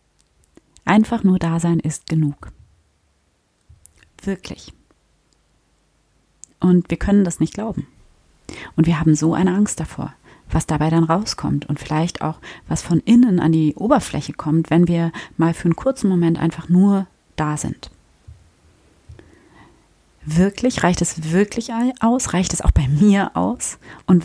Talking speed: 140 wpm